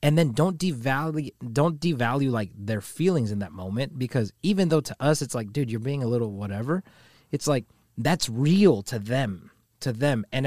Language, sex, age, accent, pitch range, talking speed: English, male, 20-39, American, 110-140 Hz, 195 wpm